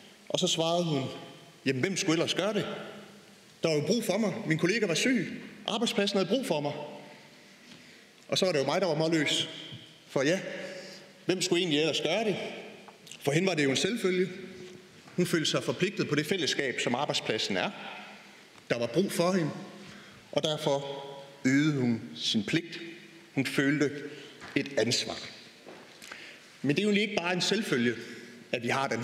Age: 30-49